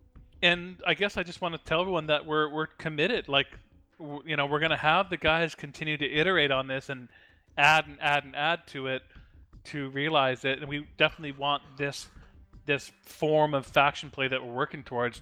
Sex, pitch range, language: male, 130-150 Hz, English